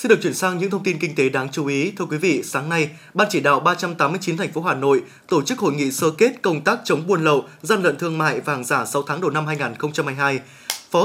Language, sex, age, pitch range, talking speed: Vietnamese, male, 20-39, 150-195 Hz, 265 wpm